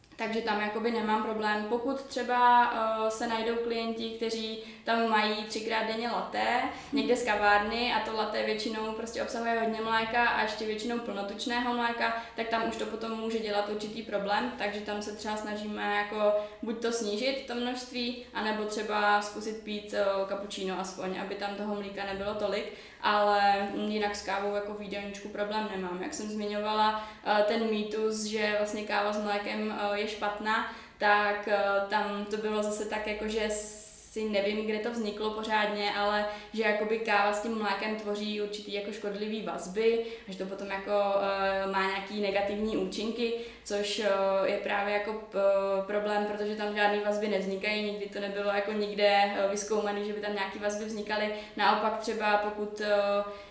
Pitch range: 205-220 Hz